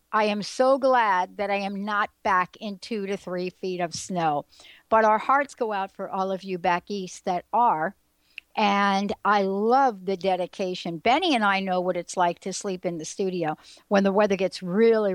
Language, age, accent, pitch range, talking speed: English, 60-79, American, 185-230 Hz, 200 wpm